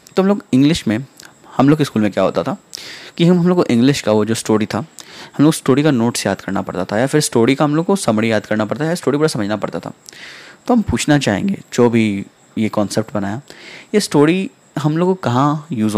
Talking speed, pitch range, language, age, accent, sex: 250 wpm, 105-150 Hz, Hindi, 10-29, native, male